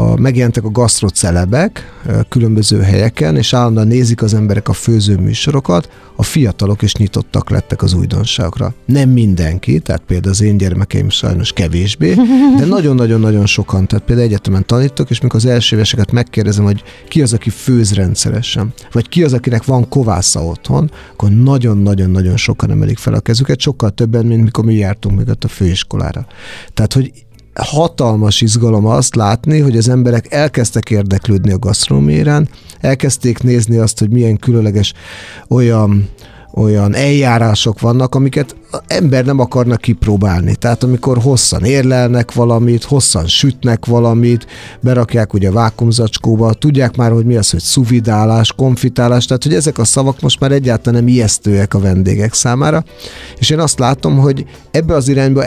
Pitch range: 105-130 Hz